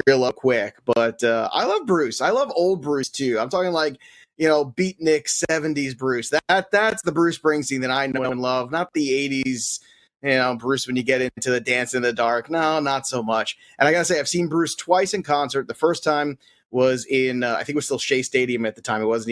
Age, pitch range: 30-49, 130-180 Hz